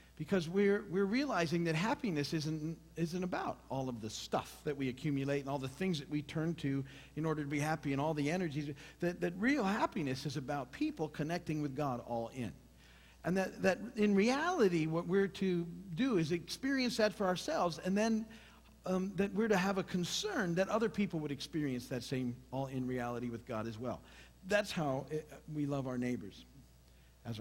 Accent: American